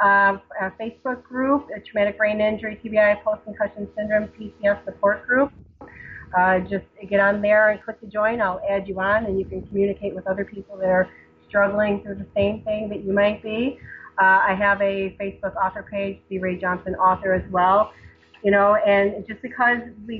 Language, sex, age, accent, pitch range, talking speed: English, female, 30-49, American, 185-210 Hz, 190 wpm